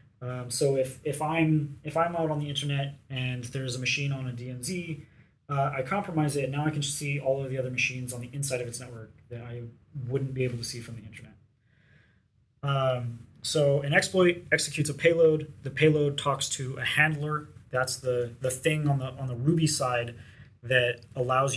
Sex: male